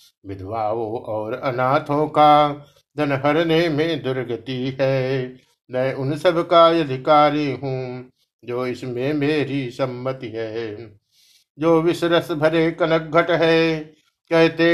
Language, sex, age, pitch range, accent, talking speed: Hindi, male, 60-79, 130-165 Hz, native, 100 wpm